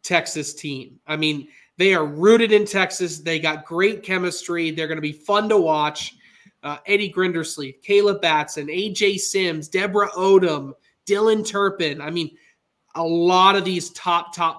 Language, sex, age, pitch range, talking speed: English, male, 20-39, 160-195 Hz, 160 wpm